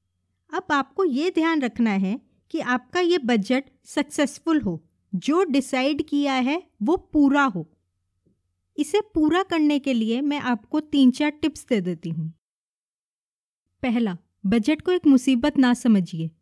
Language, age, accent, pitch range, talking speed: Hindi, 20-39, native, 210-295 Hz, 145 wpm